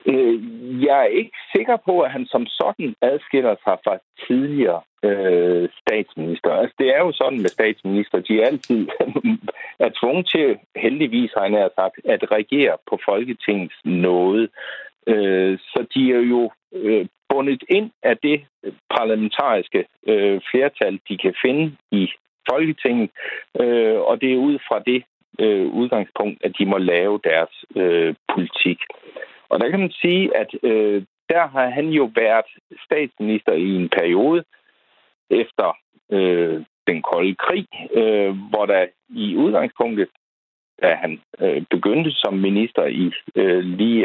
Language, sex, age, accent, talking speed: Danish, male, 60-79, native, 145 wpm